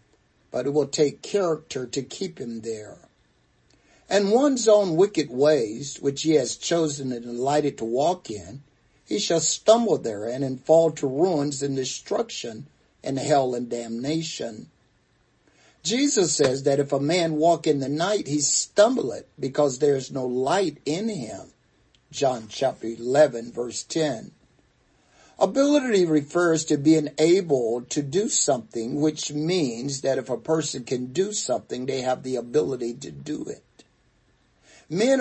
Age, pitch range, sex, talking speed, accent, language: 50-69, 130-165 Hz, male, 150 wpm, American, English